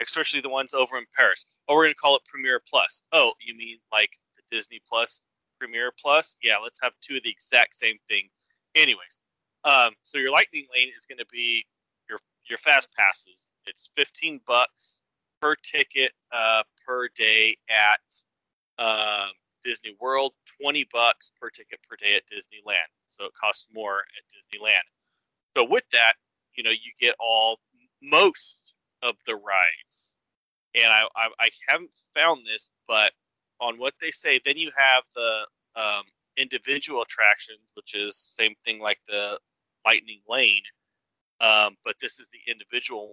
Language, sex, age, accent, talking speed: English, male, 30-49, American, 160 wpm